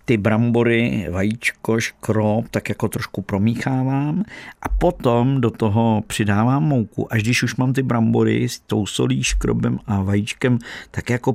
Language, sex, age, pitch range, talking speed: Czech, male, 50-69, 100-125 Hz, 150 wpm